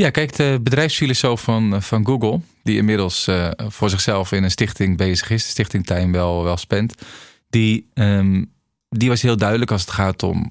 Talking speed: 185 wpm